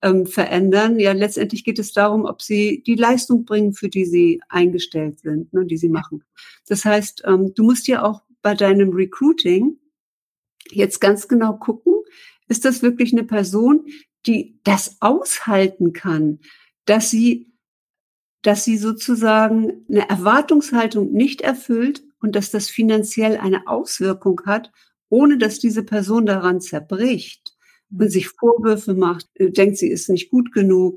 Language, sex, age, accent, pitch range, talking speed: German, female, 60-79, German, 185-230 Hz, 140 wpm